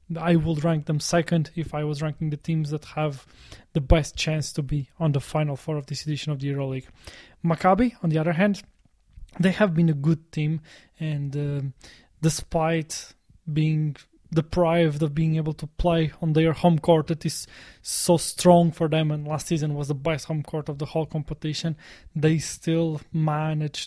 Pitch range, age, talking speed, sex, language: 150-165 Hz, 20-39, 185 wpm, male, English